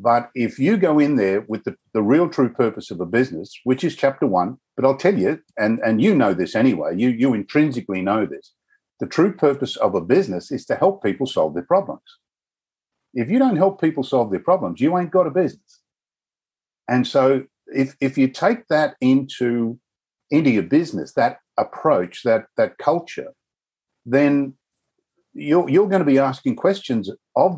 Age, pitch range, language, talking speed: 50-69, 120-185 Hz, English, 185 wpm